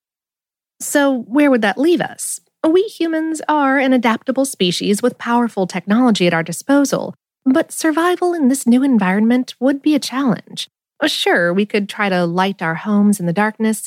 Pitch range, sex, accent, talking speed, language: 185-275 Hz, female, American, 170 wpm, English